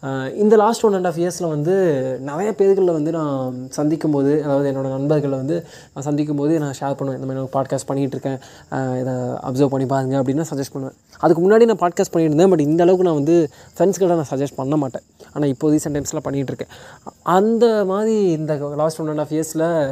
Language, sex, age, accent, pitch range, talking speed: Tamil, male, 20-39, native, 140-175 Hz, 185 wpm